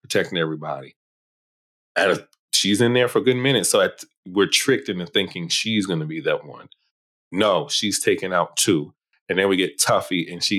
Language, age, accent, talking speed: English, 30-49, American, 200 wpm